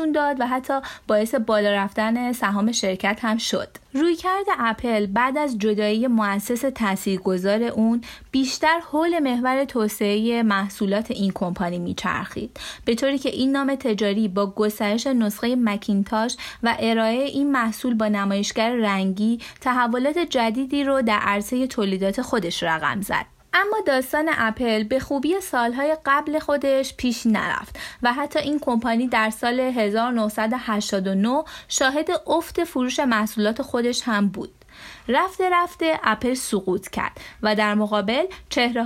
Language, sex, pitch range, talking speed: Persian, female, 210-275 Hz, 135 wpm